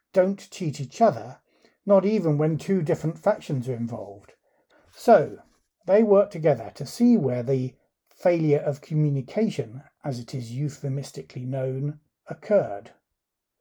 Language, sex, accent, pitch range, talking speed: English, male, British, 140-185 Hz, 130 wpm